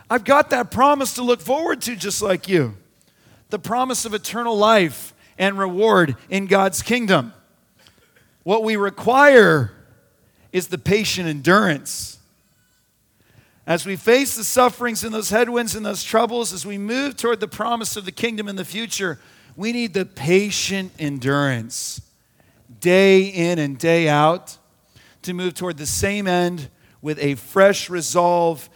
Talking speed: 150 wpm